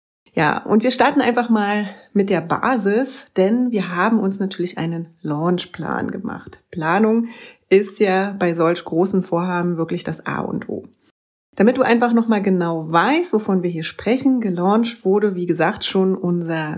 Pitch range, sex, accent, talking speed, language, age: 175-215 Hz, female, German, 160 wpm, German, 30-49